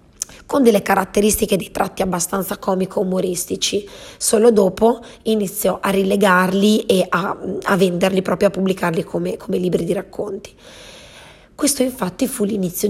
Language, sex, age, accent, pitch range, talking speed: Italian, female, 30-49, native, 185-220 Hz, 130 wpm